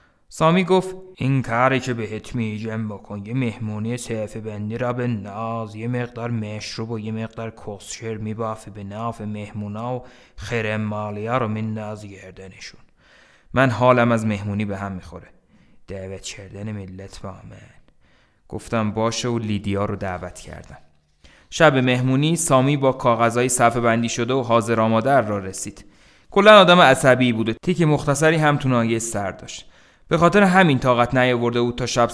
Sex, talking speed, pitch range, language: male, 155 wpm, 110-130 Hz, Persian